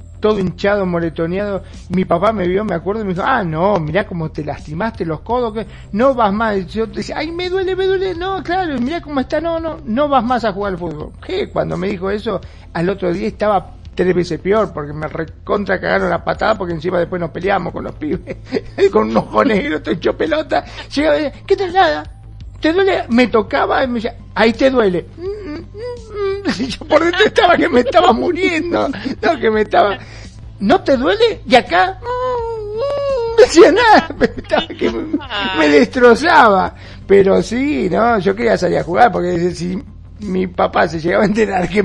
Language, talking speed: Spanish, 205 wpm